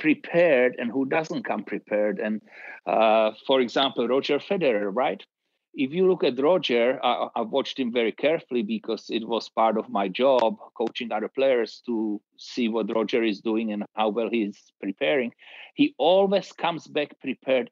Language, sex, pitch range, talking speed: English, male, 110-130 Hz, 165 wpm